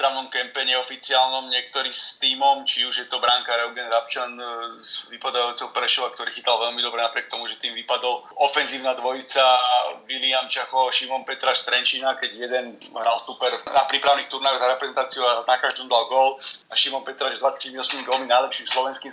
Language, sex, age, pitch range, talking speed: Slovak, male, 30-49, 120-135 Hz, 165 wpm